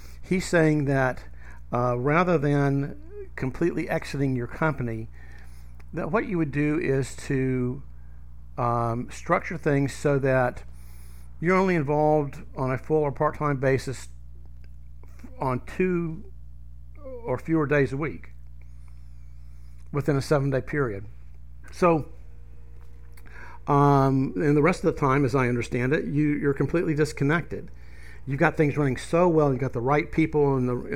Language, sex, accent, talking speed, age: English, male, American, 135 wpm, 60-79